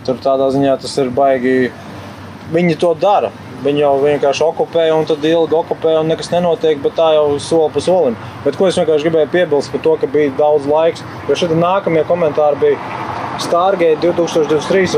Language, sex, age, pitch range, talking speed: English, male, 20-39, 150-185 Hz, 170 wpm